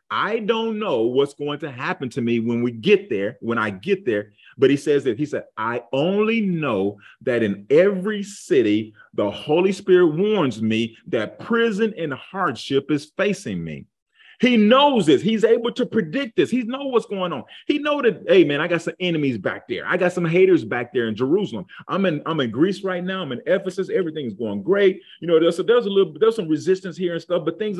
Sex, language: male, English